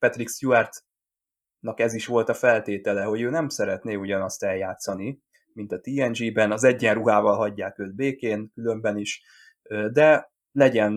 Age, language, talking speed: 20-39, Hungarian, 135 wpm